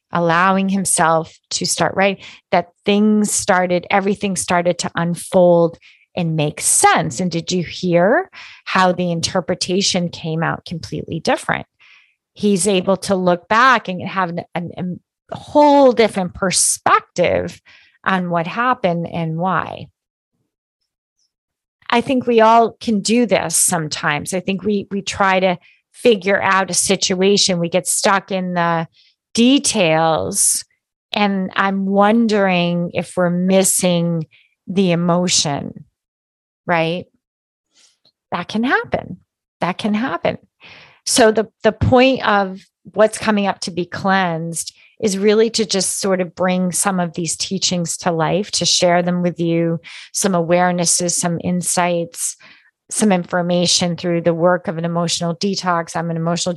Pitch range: 170-200 Hz